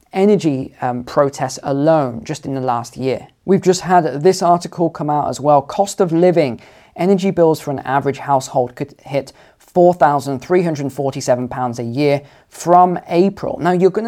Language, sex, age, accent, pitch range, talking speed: English, male, 20-39, British, 130-170 Hz, 160 wpm